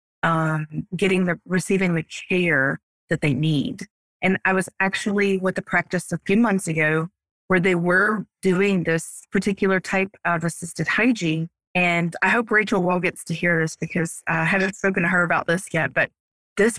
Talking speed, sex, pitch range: 180 wpm, female, 175-210 Hz